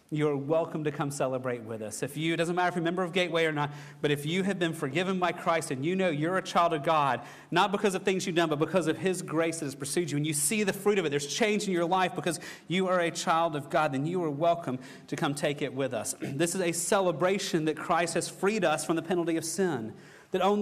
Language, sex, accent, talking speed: English, male, American, 280 wpm